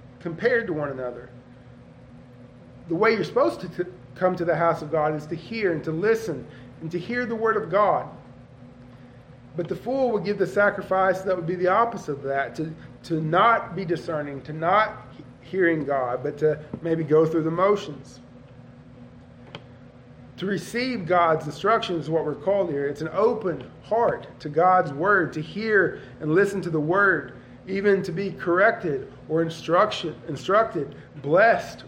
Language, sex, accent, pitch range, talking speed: English, male, American, 130-190 Hz, 170 wpm